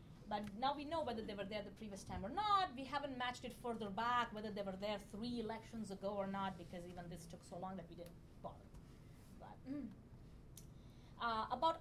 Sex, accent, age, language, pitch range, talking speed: female, Indian, 30-49, English, 180-245 Hz, 215 wpm